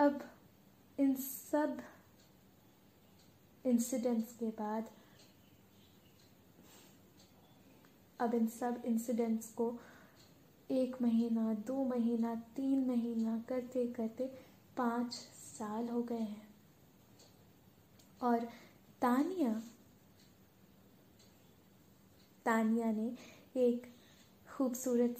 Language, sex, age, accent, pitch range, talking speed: Hindi, female, 20-39, native, 225-260 Hz, 70 wpm